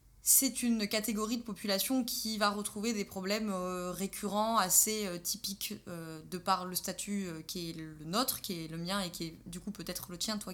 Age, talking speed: 20-39, 195 wpm